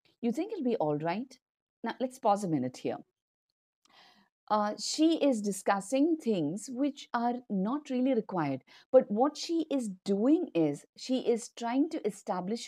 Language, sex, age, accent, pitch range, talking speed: English, female, 50-69, Indian, 195-260 Hz, 155 wpm